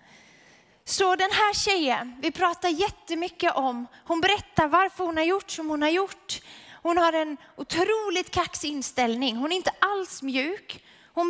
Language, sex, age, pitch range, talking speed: Swedish, female, 20-39, 285-370 Hz, 160 wpm